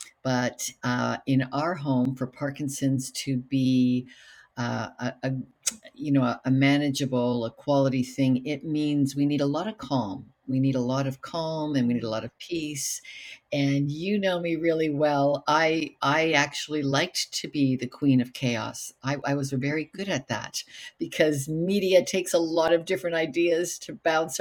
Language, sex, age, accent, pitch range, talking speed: English, female, 50-69, American, 130-160 Hz, 180 wpm